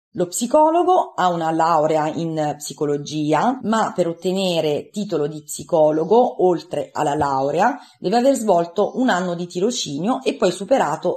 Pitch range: 155-205 Hz